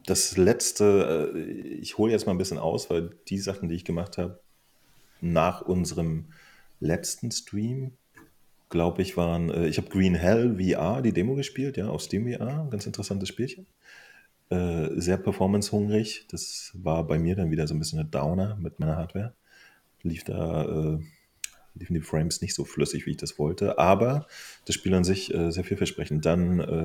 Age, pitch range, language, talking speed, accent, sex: 30-49, 80-100 Hz, German, 170 wpm, German, male